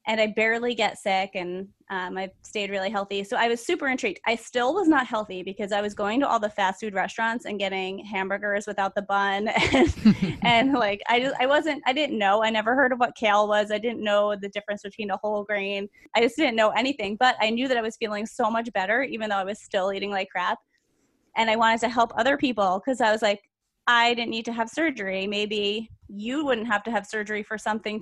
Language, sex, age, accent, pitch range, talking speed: English, female, 20-39, American, 200-230 Hz, 240 wpm